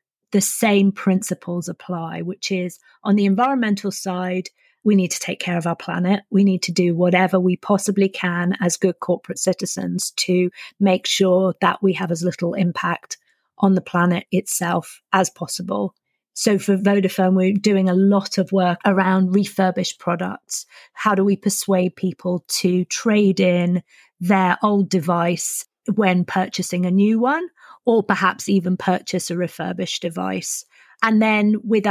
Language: English